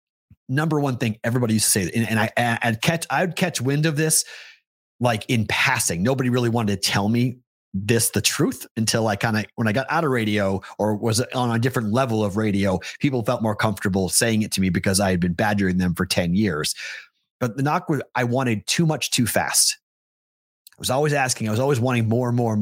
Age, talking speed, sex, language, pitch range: 30-49, 230 wpm, male, English, 110-150 Hz